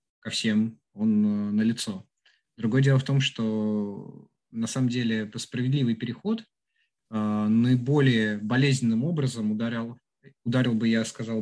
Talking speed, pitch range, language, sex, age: 125 wpm, 105-130 Hz, Russian, male, 20-39